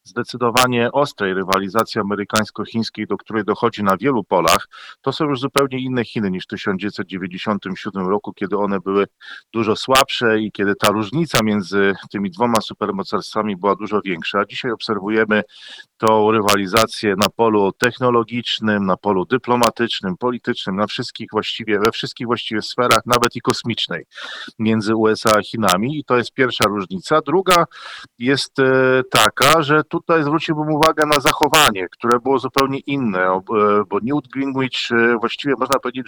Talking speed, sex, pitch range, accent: 145 wpm, male, 105-135 Hz, native